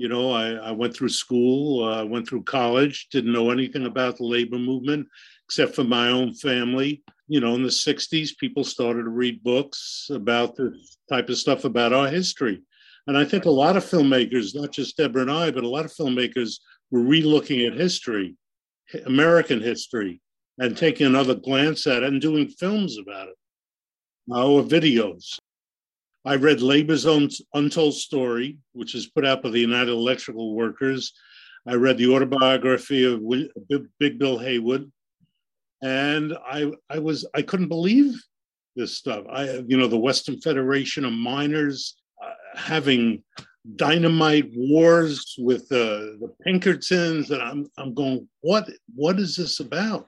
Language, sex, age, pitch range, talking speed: English, male, 50-69, 125-155 Hz, 160 wpm